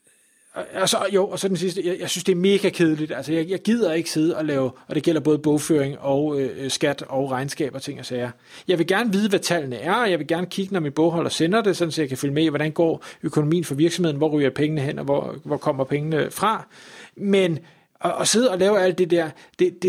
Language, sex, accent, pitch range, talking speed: Danish, male, native, 140-175 Hz, 250 wpm